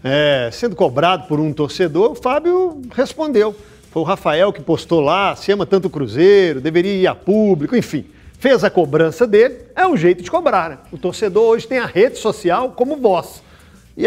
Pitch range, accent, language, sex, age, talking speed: 165-220 Hz, Brazilian, Portuguese, male, 50-69, 190 wpm